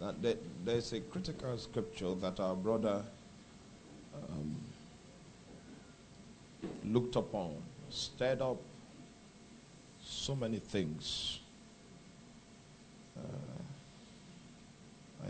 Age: 50-69